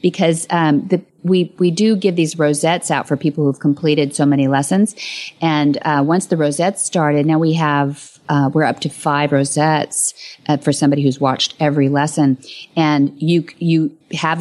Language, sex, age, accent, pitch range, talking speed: English, female, 40-59, American, 145-180 Hz, 180 wpm